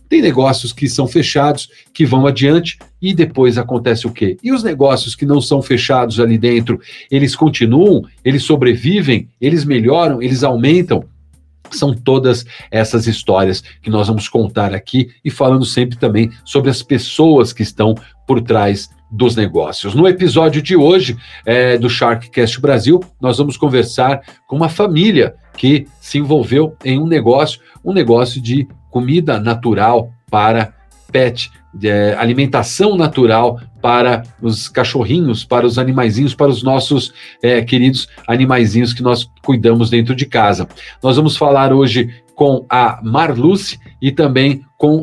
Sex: male